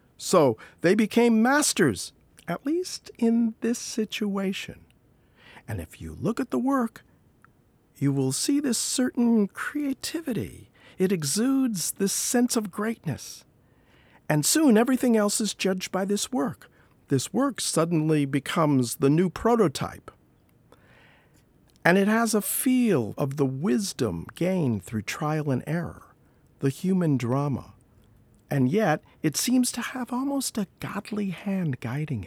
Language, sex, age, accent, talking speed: English, male, 50-69, American, 130 wpm